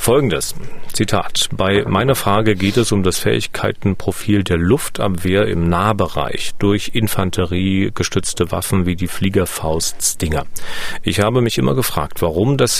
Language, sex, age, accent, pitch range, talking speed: German, male, 40-59, German, 90-110 Hz, 125 wpm